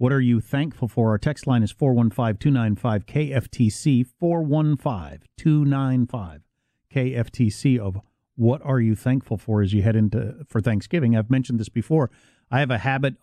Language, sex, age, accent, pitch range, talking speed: English, male, 50-69, American, 110-135 Hz, 140 wpm